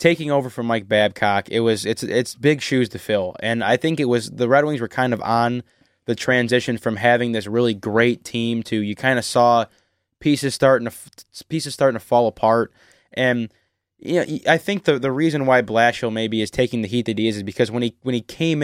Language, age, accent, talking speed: English, 20-39, American, 230 wpm